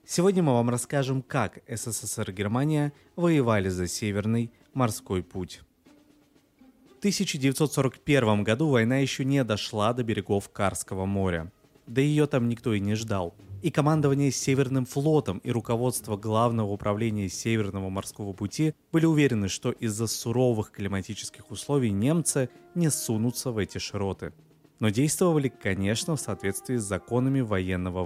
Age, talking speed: 20-39, 135 wpm